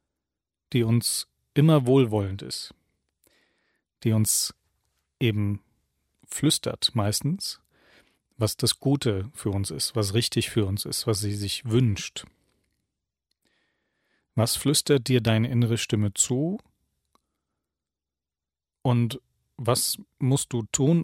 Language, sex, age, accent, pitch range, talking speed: German, male, 40-59, German, 100-125 Hz, 105 wpm